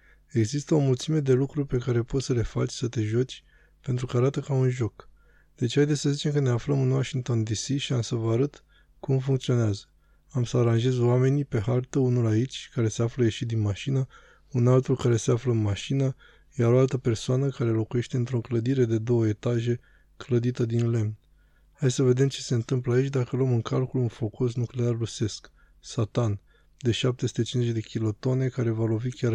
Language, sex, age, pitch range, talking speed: Romanian, male, 20-39, 115-130 Hz, 200 wpm